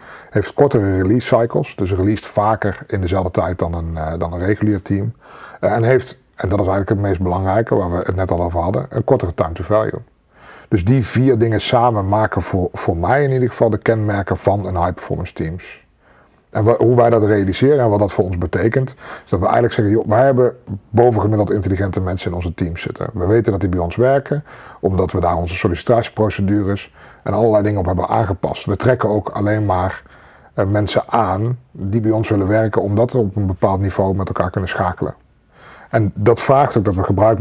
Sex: male